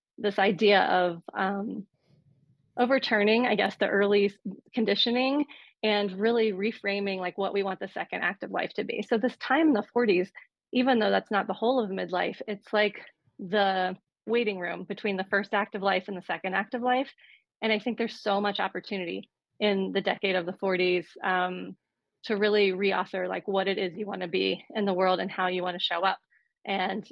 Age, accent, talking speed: 30-49, American, 200 wpm